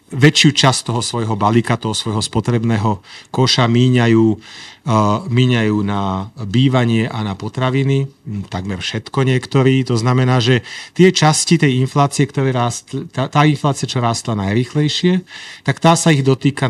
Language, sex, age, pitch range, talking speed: Slovak, male, 40-59, 110-145 Hz, 145 wpm